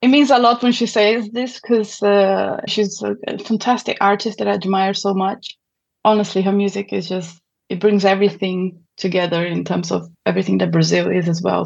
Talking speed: 190 wpm